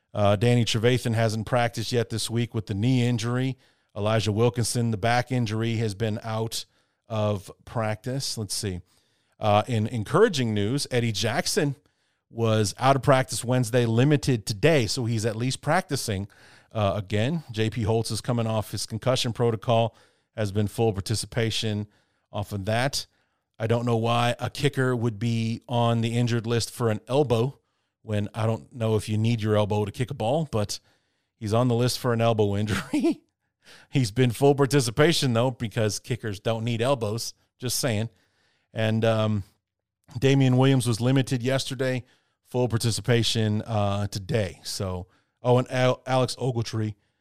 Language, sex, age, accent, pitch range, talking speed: English, male, 40-59, American, 105-125 Hz, 160 wpm